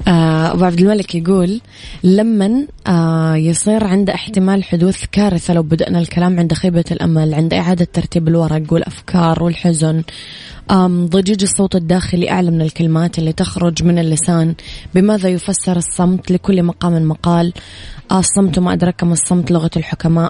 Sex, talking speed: female, 135 wpm